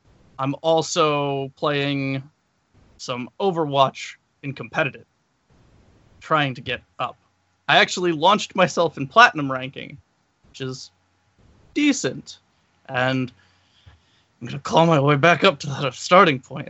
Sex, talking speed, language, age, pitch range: male, 120 wpm, English, 20-39, 125-170 Hz